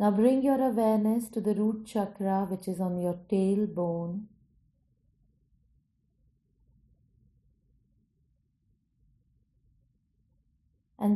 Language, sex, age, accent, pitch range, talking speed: Hindi, female, 30-49, native, 180-215 Hz, 75 wpm